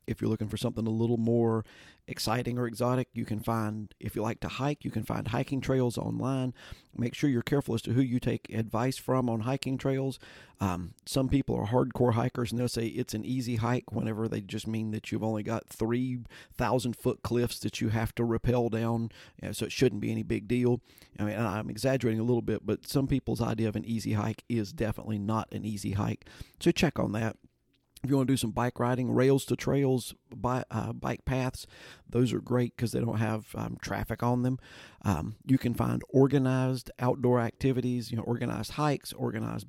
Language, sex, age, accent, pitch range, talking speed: English, male, 40-59, American, 110-125 Hz, 210 wpm